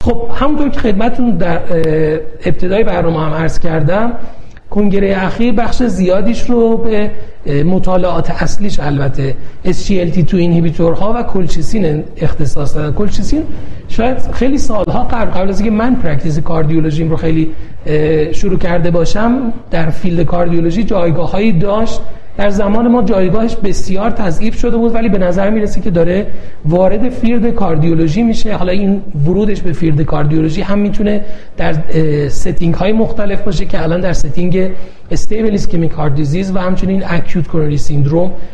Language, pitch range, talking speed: Persian, 160-210 Hz, 135 wpm